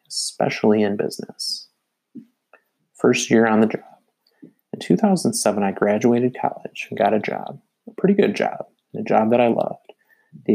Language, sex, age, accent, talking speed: English, male, 30-49, American, 155 wpm